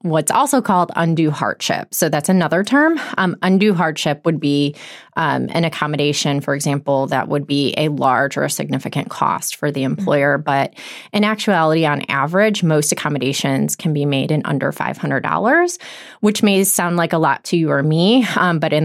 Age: 20-39